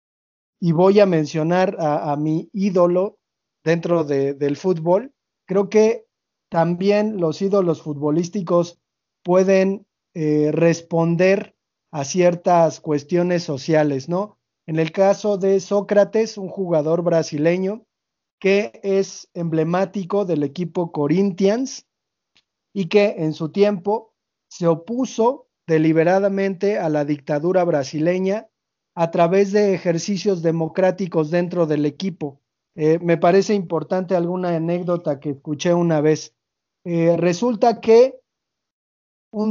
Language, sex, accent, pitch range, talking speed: Spanish, male, Mexican, 160-195 Hz, 110 wpm